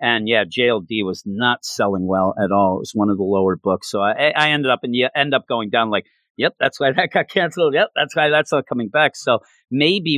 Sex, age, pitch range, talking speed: male, 40-59, 110-155 Hz, 255 wpm